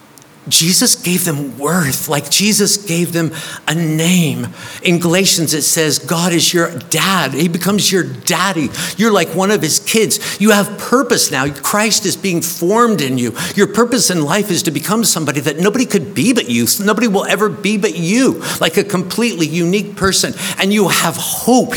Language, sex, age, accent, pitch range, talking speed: English, male, 50-69, American, 150-195 Hz, 185 wpm